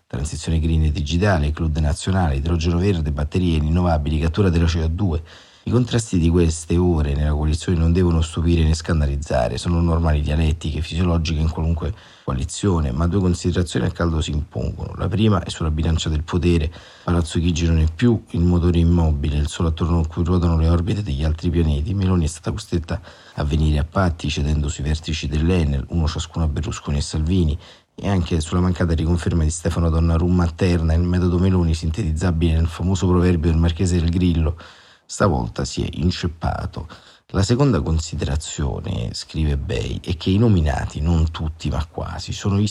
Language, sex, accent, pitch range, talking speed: Italian, male, native, 80-90 Hz, 170 wpm